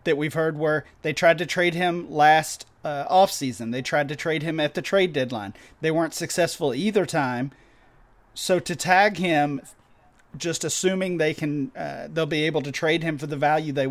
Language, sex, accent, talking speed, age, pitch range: English, male, American, 200 wpm, 30-49, 140-165 Hz